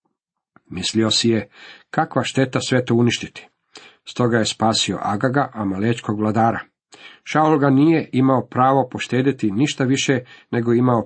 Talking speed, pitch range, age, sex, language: 130 wpm, 110-140 Hz, 50-69, male, Croatian